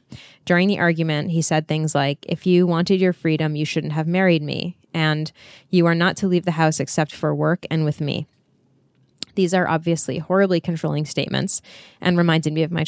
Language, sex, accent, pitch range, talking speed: English, female, American, 150-180 Hz, 195 wpm